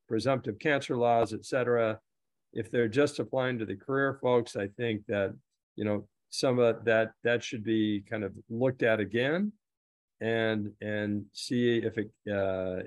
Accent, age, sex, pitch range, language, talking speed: American, 50-69, male, 105-130 Hz, English, 160 wpm